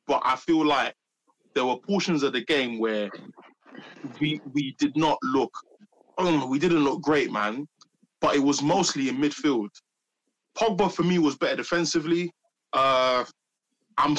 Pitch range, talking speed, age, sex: 145-220 Hz, 150 wpm, 20-39, male